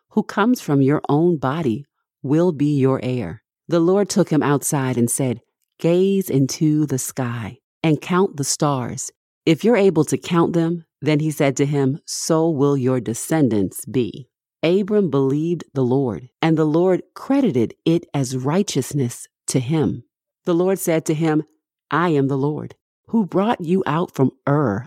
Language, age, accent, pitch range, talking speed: English, 50-69, American, 130-170 Hz, 165 wpm